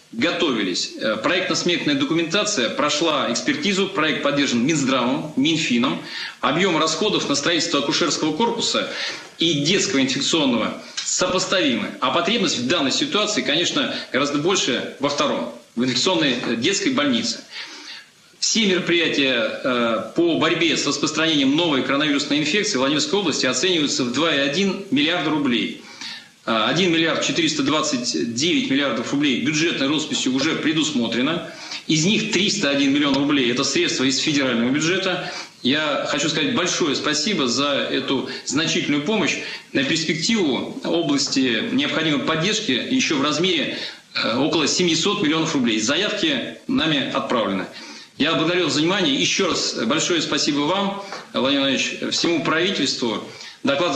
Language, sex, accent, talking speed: Russian, male, native, 120 wpm